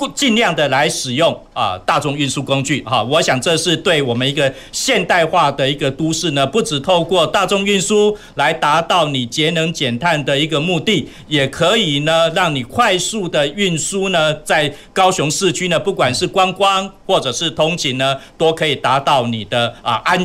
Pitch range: 130-170 Hz